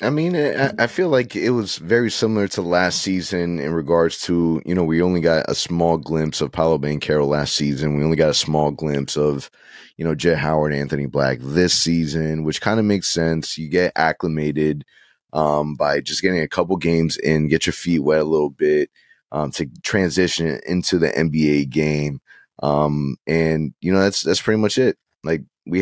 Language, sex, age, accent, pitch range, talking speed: English, male, 20-39, American, 80-95 Hz, 195 wpm